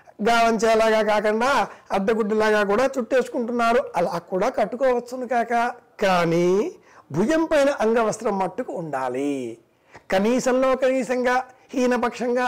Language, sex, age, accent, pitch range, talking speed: Telugu, male, 60-79, native, 195-245 Hz, 80 wpm